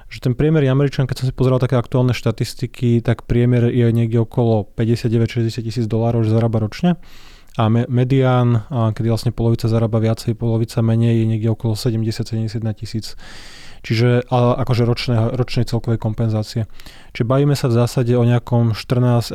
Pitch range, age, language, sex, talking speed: 115-125 Hz, 20-39, Slovak, male, 150 wpm